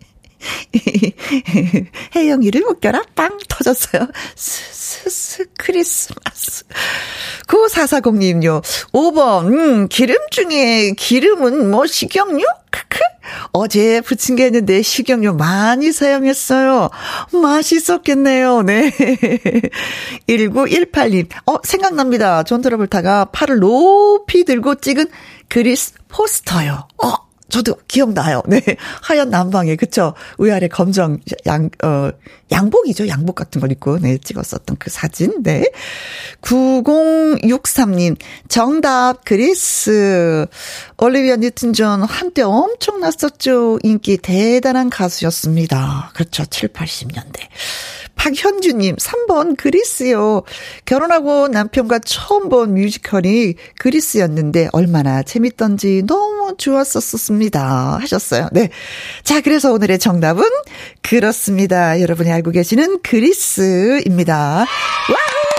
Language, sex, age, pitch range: Korean, female, 40-59, 190-295 Hz